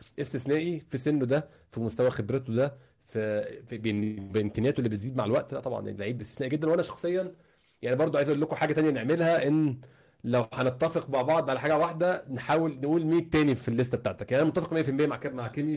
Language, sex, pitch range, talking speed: Arabic, male, 115-145 Hz, 190 wpm